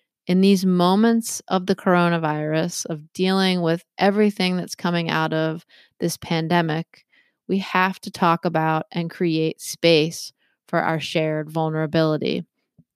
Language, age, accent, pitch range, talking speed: English, 30-49, American, 165-195 Hz, 130 wpm